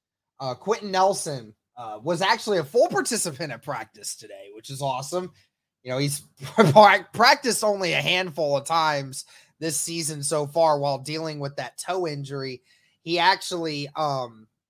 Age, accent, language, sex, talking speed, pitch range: 20-39, American, English, male, 150 wpm, 145-175 Hz